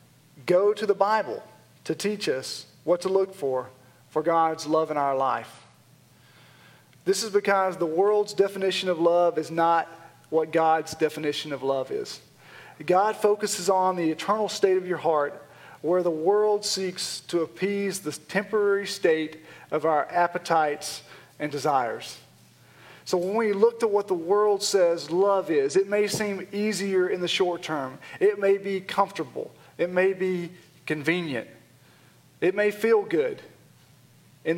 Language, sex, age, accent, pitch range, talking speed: English, male, 40-59, American, 155-195 Hz, 155 wpm